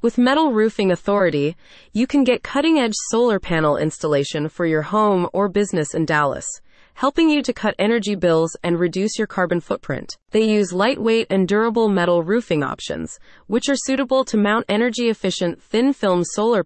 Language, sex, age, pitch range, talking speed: English, female, 30-49, 170-230 Hz, 160 wpm